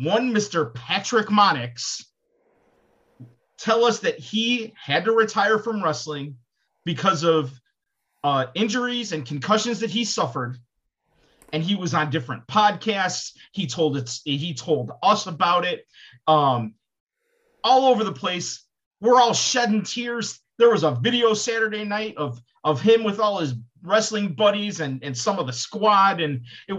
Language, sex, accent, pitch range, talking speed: English, male, American, 165-235 Hz, 145 wpm